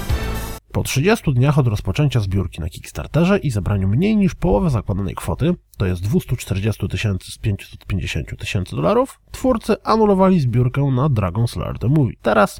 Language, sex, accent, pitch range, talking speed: Polish, male, native, 105-165 Hz, 150 wpm